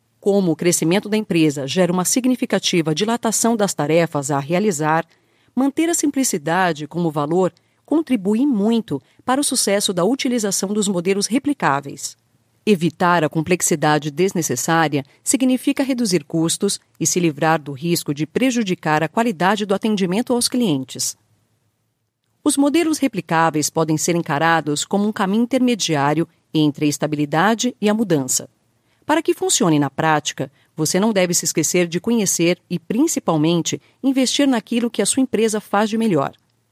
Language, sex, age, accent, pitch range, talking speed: Portuguese, female, 40-59, Brazilian, 155-225 Hz, 140 wpm